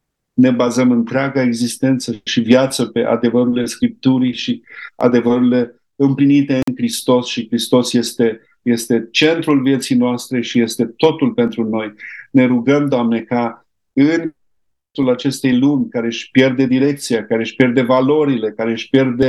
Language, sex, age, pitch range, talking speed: Romanian, male, 50-69, 120-140 Hz, 140 wpm